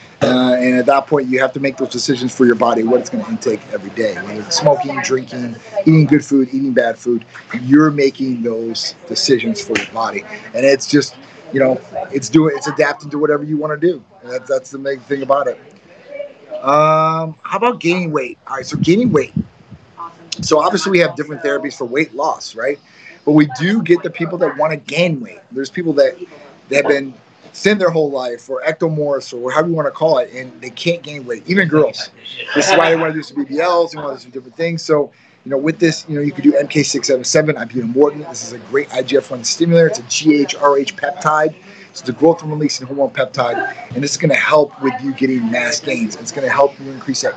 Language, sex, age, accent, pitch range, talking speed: English, male, 30-49, American, 130-165 Hz, 230 wpm